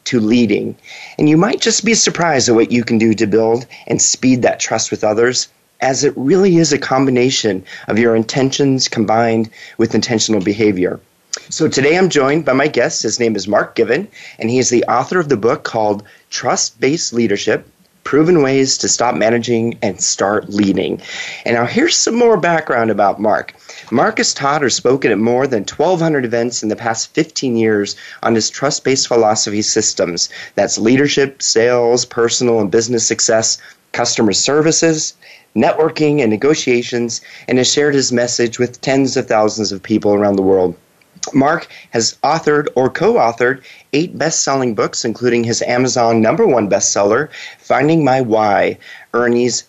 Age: 30-49